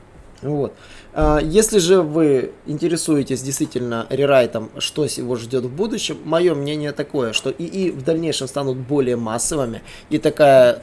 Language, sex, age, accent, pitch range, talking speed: Russian, male, 20-39, native, 125-150 Hz, 135 wpm